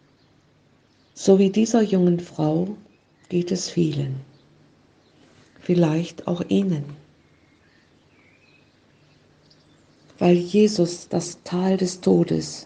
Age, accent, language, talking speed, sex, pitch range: 50-69, German, German, 80 wpm, female, 145-180 Hz